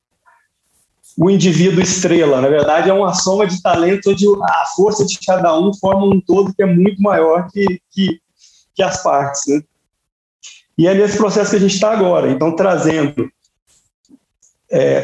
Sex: male